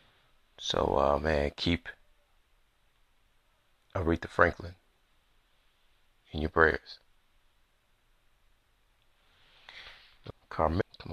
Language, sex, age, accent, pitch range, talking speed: English, male, 30-49, American, 85-115 Hz, 60 wpm